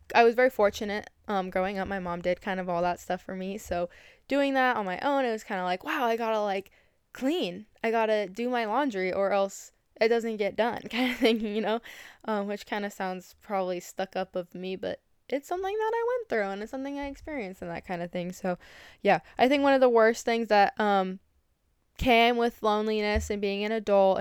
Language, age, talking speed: English, 10-29, 235 wpm